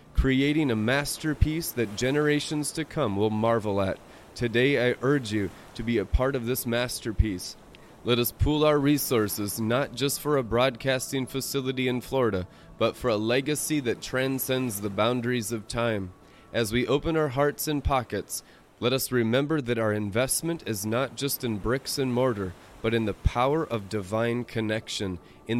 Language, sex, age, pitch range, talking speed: English, male, 30-49, 110-140 Hz, 170 wpm